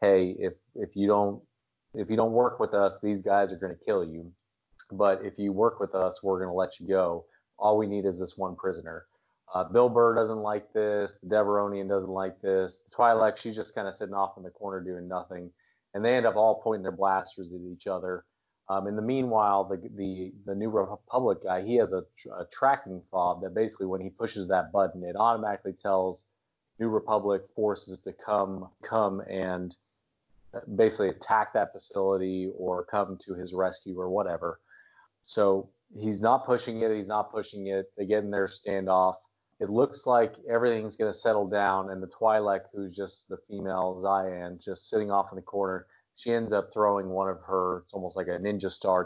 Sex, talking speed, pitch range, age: male, 205 wpm, 95-105 Hz, 30-49